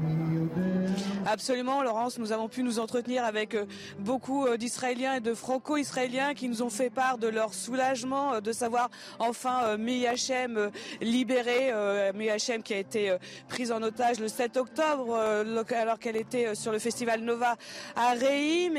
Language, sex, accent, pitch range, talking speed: French, female, French, 235-285 Hz, 150 wpm